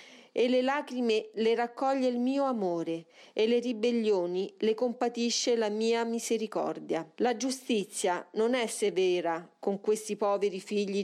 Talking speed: 135 wpm